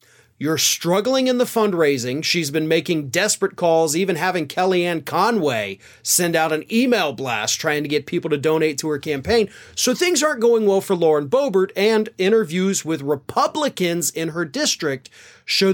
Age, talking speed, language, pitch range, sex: 30-49, 170 wpm, English, 160-230 Hz, male